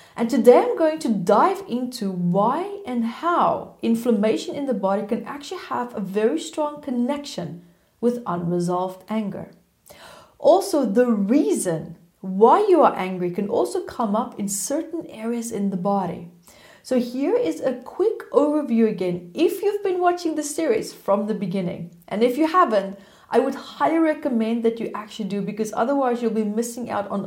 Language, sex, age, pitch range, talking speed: English, female, 30-49, 200-290 Hz, 165 wpm